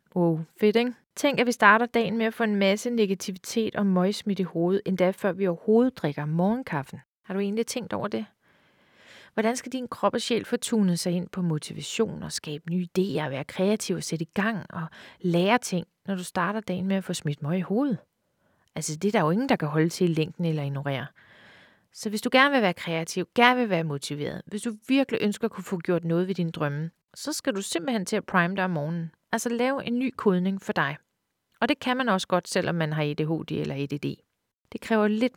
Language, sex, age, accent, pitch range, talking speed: Danish, female, 30-49, native, 170-220 Hz, 225 wpm